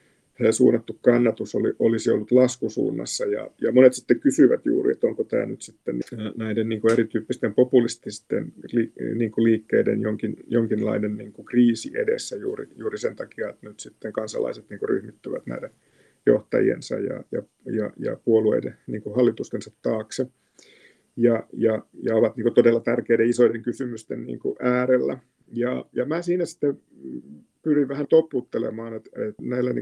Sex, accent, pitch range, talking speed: male, native, 110-125 Hz, 140 wpm